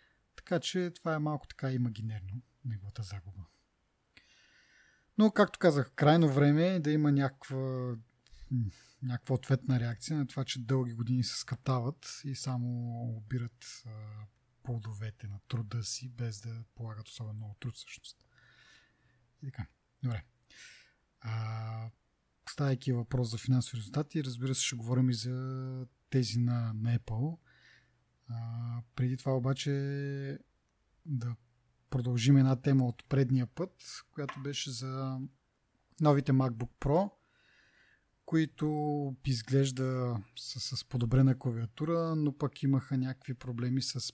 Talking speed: 115 wpm